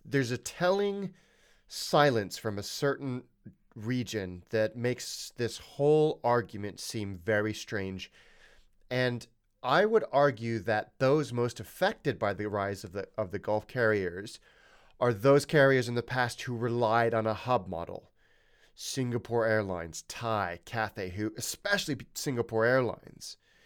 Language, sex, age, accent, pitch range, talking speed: English, male, 30-49, American, 110-140 Hz, 135 wpm